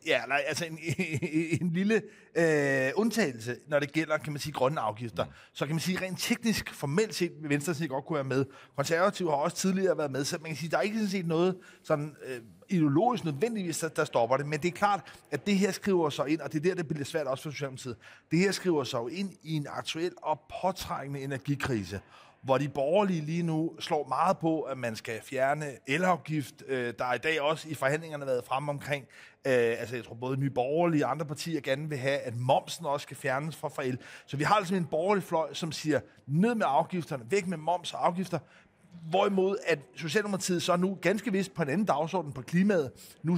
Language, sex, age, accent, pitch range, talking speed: Danish, male, 30-49, native, 140-185 Hz, 225 wpm